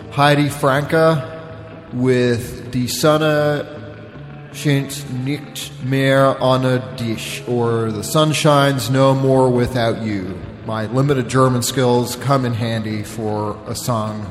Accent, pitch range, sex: American, 110-135 Hz, male